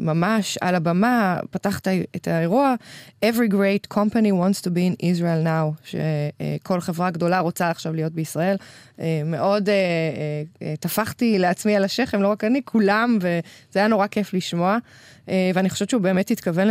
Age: 20-39